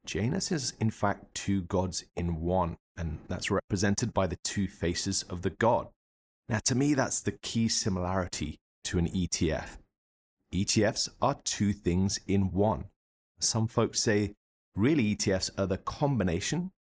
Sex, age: male, 30-49